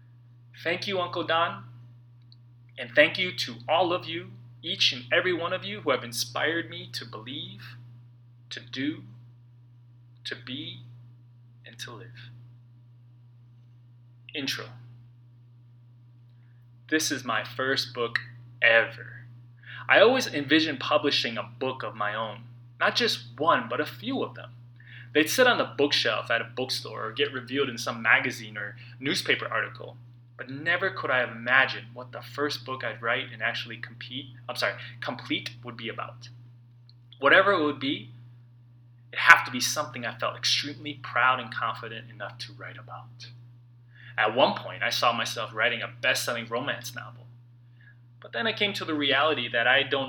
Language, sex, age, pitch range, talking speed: English, male, 20-39, 120-130 Hz, 155 wpm